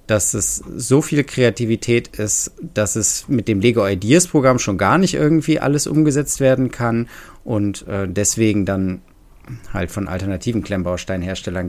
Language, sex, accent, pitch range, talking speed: German, male, German, 95-130 Hz, 150 wpm